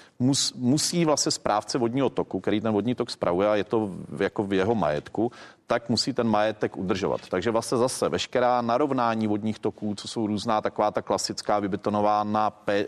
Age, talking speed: 40-59, 170 wpm